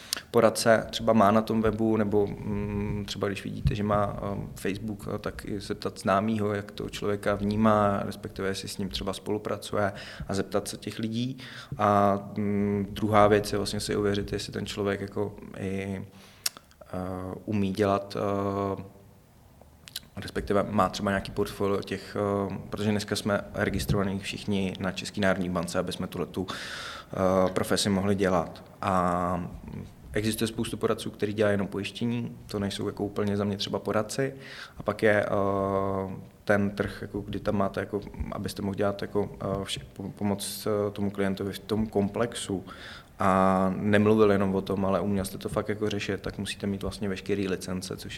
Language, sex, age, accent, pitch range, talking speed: Czech, male, 20-39, native, 95-105 Hz, 160 wpm